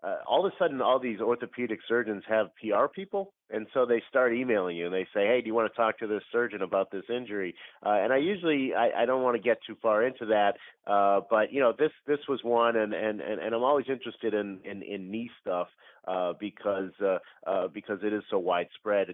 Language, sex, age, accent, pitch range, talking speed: English, male, 40-59, American, 100-120 Hz, 235 wpm